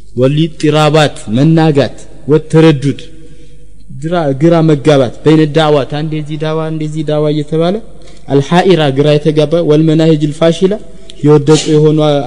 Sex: male